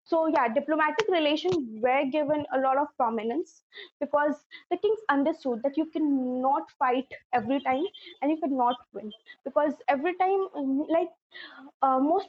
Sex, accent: female, Indian